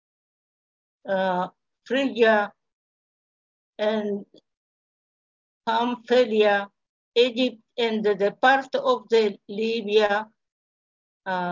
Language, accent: English, American